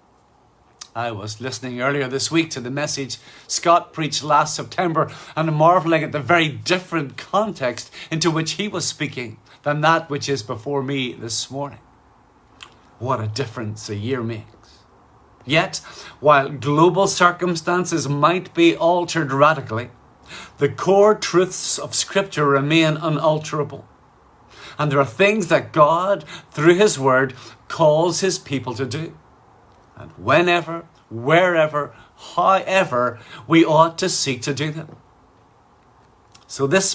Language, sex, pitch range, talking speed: English, male, 130-165 Hz, 130 wpm